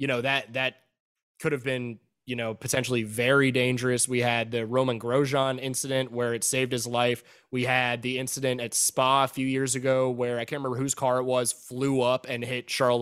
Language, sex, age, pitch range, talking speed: English, male, 20-39, 120-140 Hz, 210 wpm